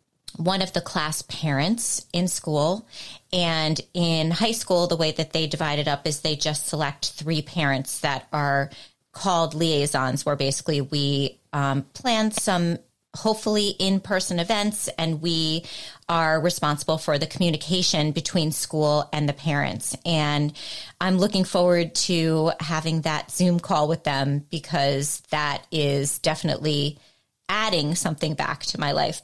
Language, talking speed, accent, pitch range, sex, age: English, 145 wpm, American, 150-175 Hz, female, 30-49